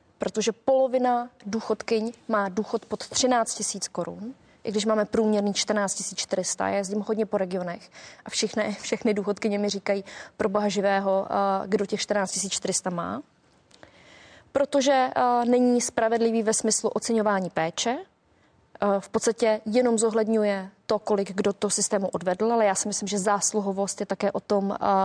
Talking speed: 140 wpm